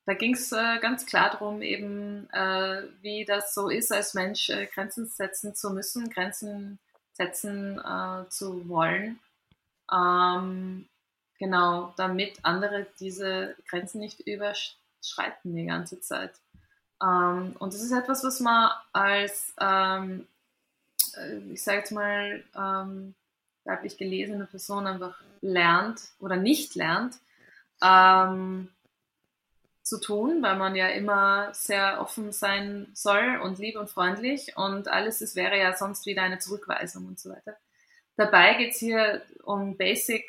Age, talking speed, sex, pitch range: 20-39, 135 wpm, female, 185-225 Hz